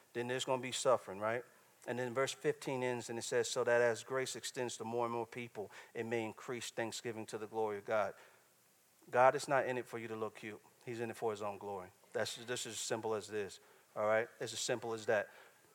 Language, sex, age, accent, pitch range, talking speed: English, male, 40-59, American, 120-155 Hz, 245 wpm